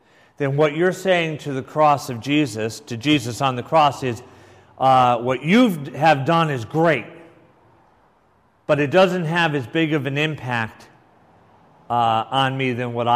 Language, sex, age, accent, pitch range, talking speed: English, male, 40-59, American, 125-175 Hz, 165 wpm